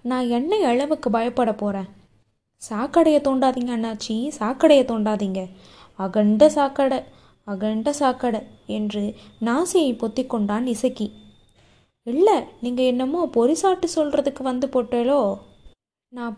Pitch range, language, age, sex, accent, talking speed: 220-275 Hz, Tamil, 20-39, female, native, 95 wpm